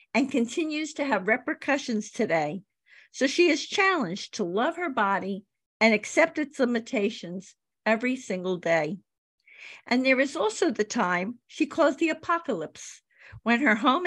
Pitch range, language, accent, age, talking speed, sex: 205-275 Hz, English, American, 50-69, 145 wpm, female